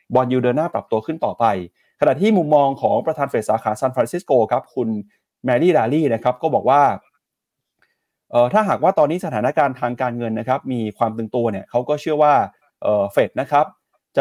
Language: Thai